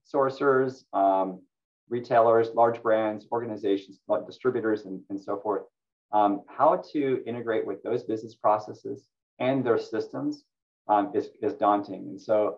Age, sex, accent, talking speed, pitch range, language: 30-49, male, American, 135 wpm, 100-120 Hz, English